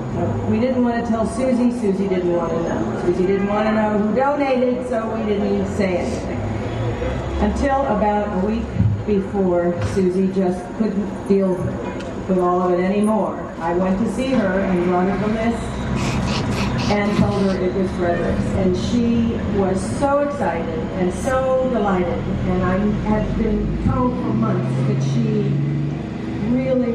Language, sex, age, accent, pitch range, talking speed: English, female, 40-59, American, 180-220 Hz, 160 wpm